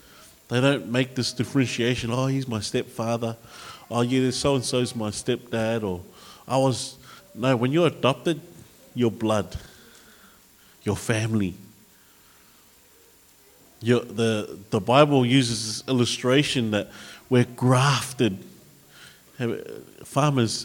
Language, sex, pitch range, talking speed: English, male, 120-155 Hz, 105 wpm